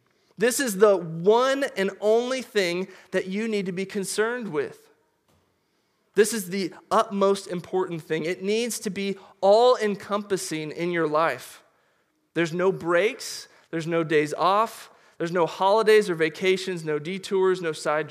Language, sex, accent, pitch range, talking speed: English, male, American, 165-200 Hz, 145 wpm